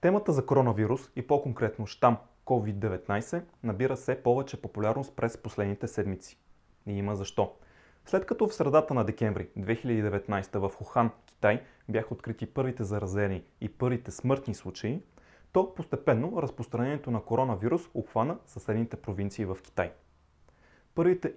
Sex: male